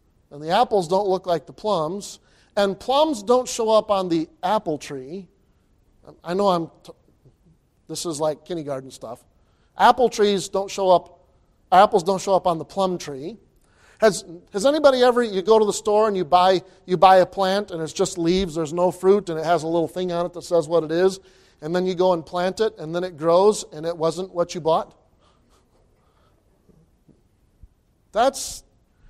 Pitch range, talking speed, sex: 165-210 Hz, 190 wpm, male